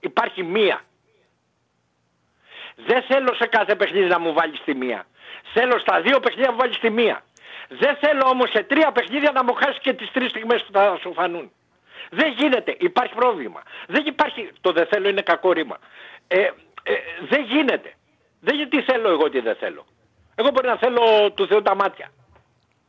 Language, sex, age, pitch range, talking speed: Greek, male, 60-79, 195-260 Hz, 175 wpm